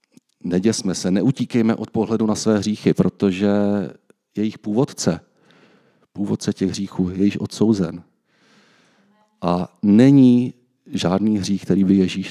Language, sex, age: Czech, male, 40-59